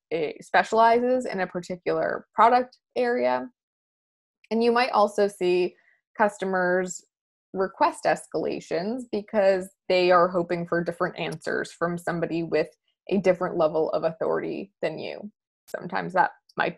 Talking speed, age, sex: 125 wpm, 20-39, female